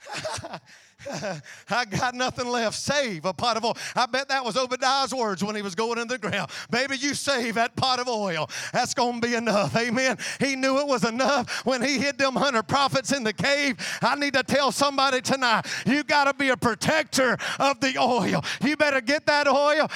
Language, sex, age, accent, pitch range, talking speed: English, male, 40-59, American, 180-280 Hz, 205 wpm